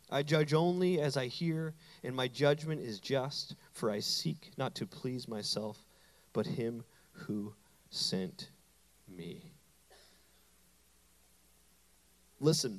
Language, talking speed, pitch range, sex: English, 115 wpm, 140-200 Hz, male